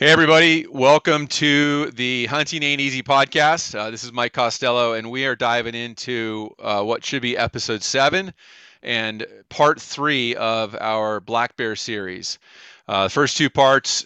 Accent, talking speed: American, 160 wpm